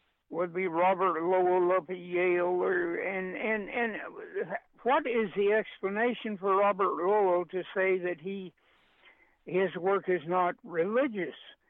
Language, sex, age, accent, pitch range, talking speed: English, male, 60-79, American, 185-225 Hz, 140 wpm